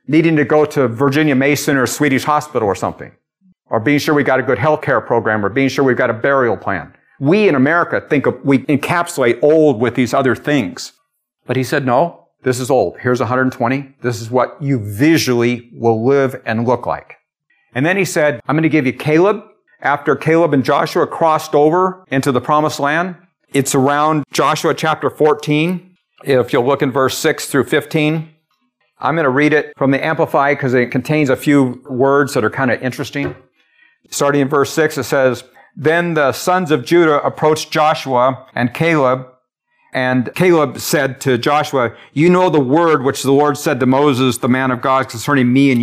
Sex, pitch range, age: male, 130-155 Hz, 50-69